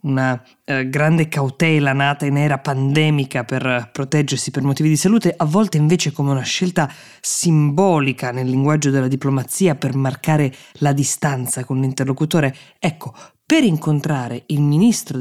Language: Italian